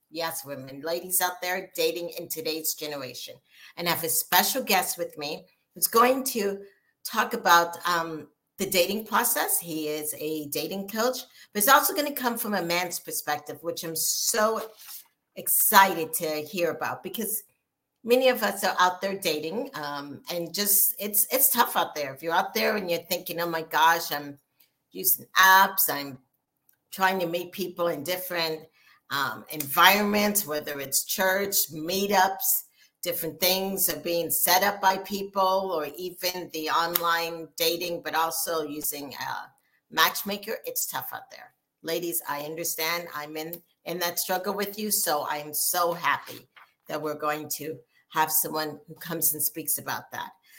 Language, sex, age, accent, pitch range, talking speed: English, female, 50-69, American, 155-195 Hz, 165 wpm